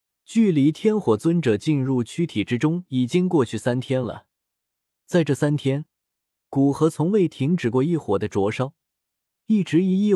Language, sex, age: Chinese, male, 20-39